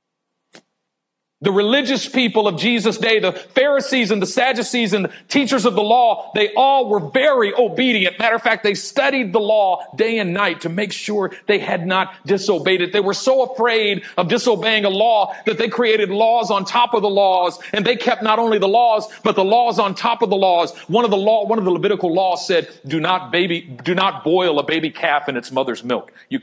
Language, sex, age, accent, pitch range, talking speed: English, male, 40-59, American, 185-235 Hz, 220 wpm